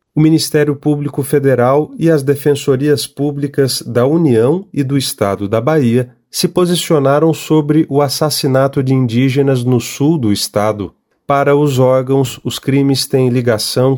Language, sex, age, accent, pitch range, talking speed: Portuguese, male, 40-59, Brazilian, 125-155 Hz, 140 wpm